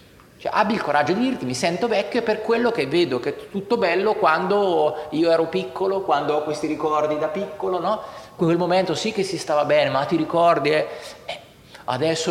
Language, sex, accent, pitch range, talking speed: Italian, male, native, 150-225 Hz, 205 wpm